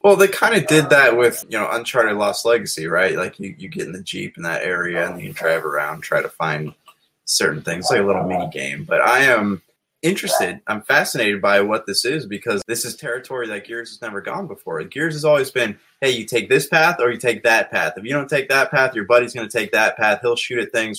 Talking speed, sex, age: 250 wpm, male, 20-39